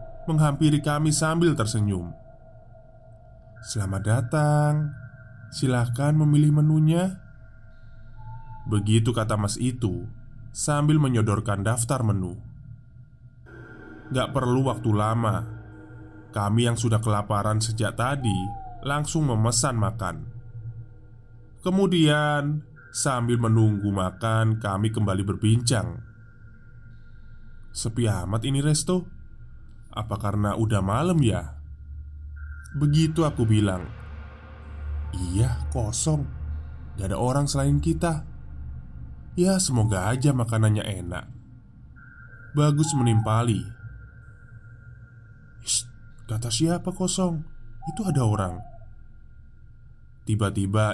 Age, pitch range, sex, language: 20-39, 105-130 Hz, male, Indonesian